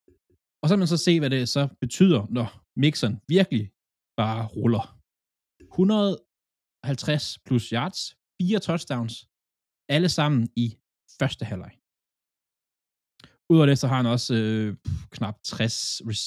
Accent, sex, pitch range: native, male, 110-140 Hz